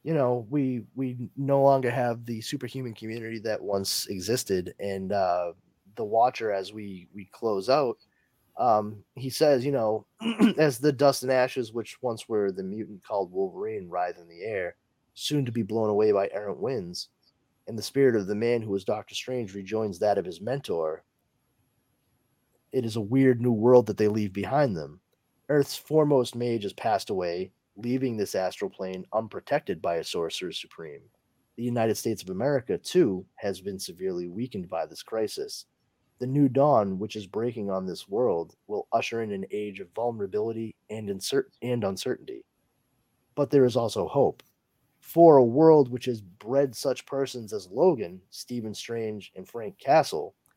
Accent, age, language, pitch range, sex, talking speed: American, 30-49, English, 105-135 Hz, male, 170 wpm